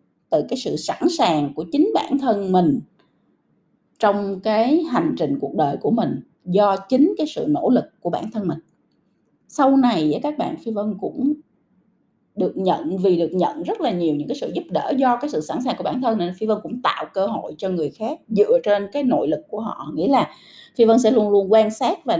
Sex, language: female, Vietnamese